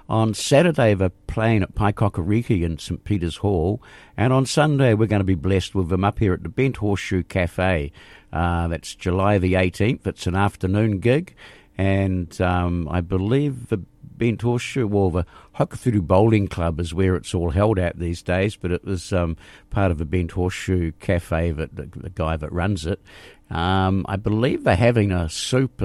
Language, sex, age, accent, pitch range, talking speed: English, male, 50-69, Australian, 85-105 Hz, 185 wpm